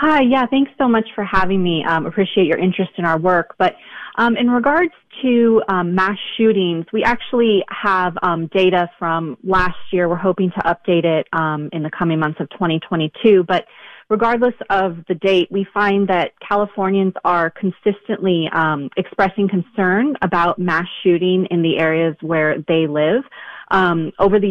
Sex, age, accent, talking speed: female, 30-49, American, 170 wpm